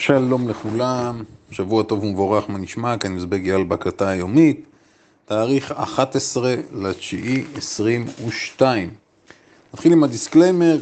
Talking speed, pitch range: 115 wpm, 105-140 Hz